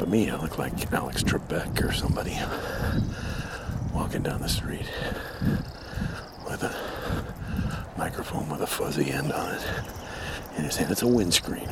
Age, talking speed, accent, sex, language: 60-79, 145 wpm, American, male, English